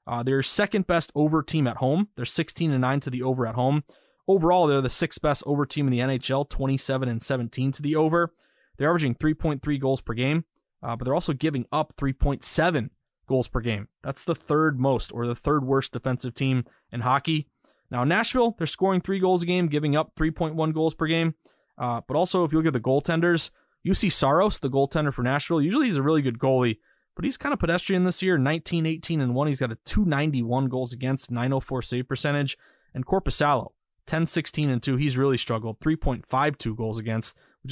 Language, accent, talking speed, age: English, American, 215 wpm, 20-39